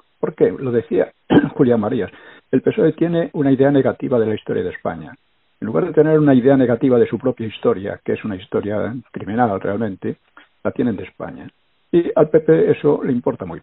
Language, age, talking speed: Spanish, 60-79, 195 wpm